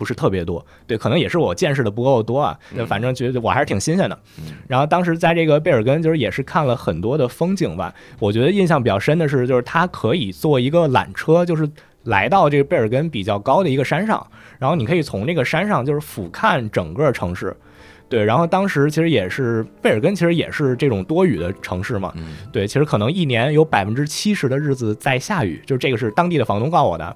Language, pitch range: Chinese, 110-160 Hz